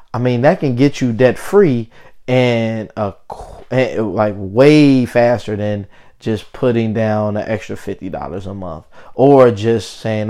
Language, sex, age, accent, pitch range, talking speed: English, male, 20-39, American, 105-125 Hz, 150 wpm